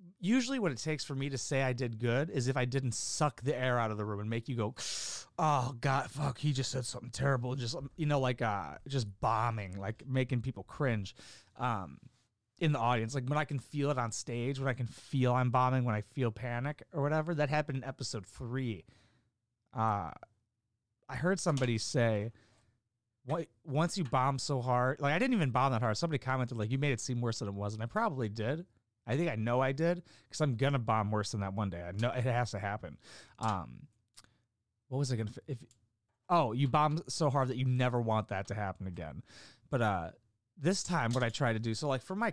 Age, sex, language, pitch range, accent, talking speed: 30-49, male, English, 110-140 Hz, American, 230 wpm